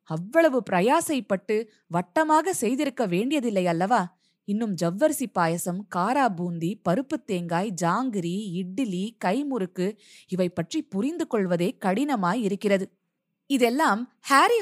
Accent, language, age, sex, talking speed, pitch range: native, Tamil, 20-39, female, 95 wpm, 190-270 Hz